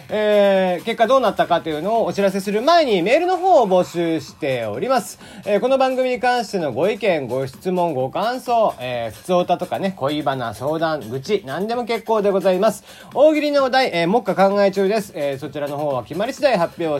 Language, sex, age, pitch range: Japanese, male, 40-59, 145-225 Hz